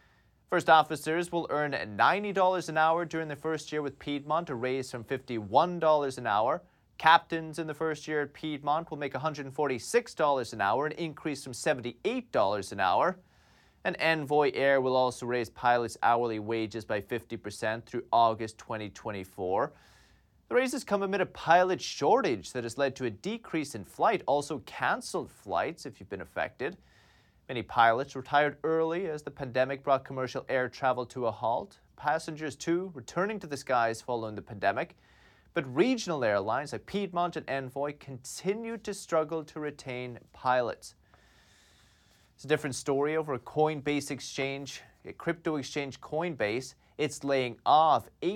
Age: 30-49